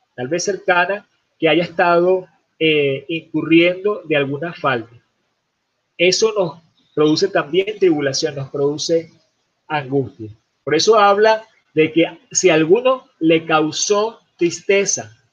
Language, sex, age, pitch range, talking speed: Spanish, male, 40-59, 150-195 Hz, 115 wpm